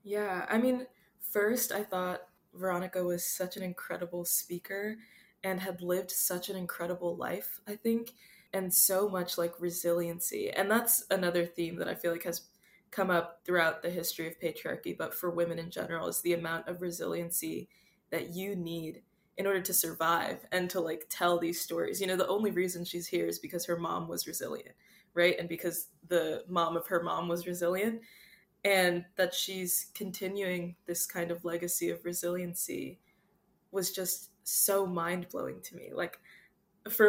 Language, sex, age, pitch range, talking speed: English, female, 20-39, 175-195 Hz, 175 wpm